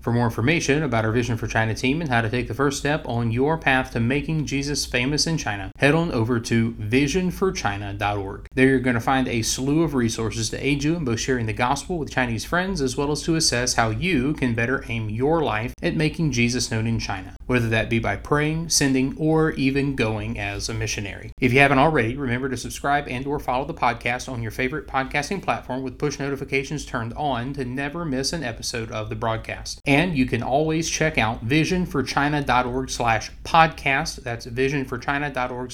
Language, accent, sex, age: English, American, male, 30-49